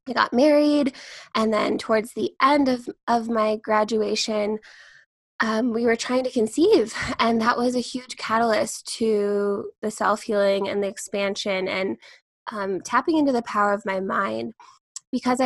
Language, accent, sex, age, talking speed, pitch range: English, American, female, 10-29, 155 wpm, 210-250 Hz